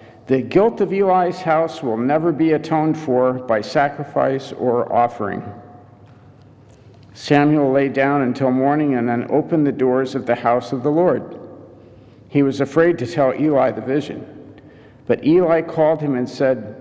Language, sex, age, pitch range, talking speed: English, male, 50-69, 120-155 Hz, 155 wpm